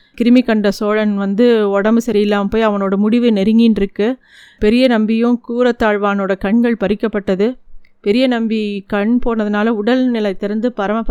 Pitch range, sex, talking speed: 215-255 Hz, female, 125 wpm